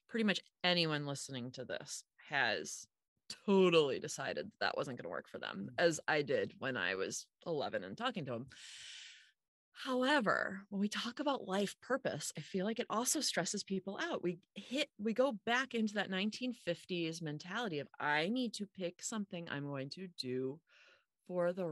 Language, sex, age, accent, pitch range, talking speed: English, female, 30-49, American, 170-235 Hz, 175 wpm